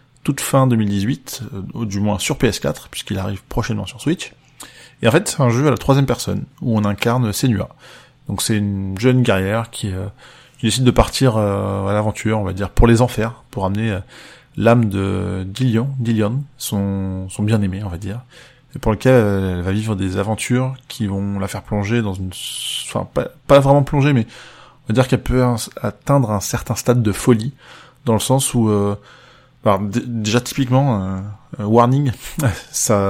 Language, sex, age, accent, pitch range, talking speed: French, male, 20-39, French, 100-130 Hz, 190 wpm